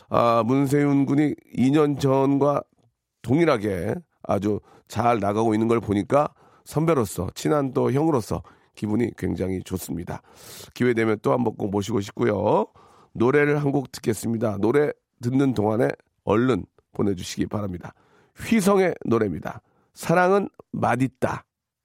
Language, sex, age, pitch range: Korean, male, 40-59, 100-135 Hz